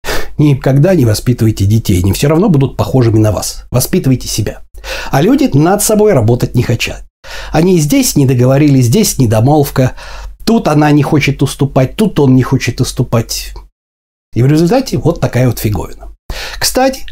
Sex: male